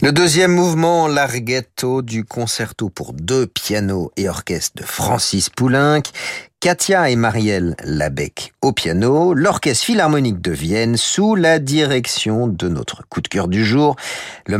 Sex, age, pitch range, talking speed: male, 50-69, 85-130 Hz, 145 wpm